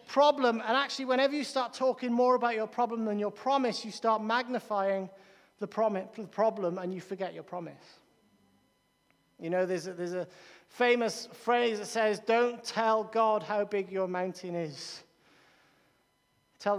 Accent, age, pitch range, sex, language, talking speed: British, 40-59, 195-270 Hz, male, English, 155 wpm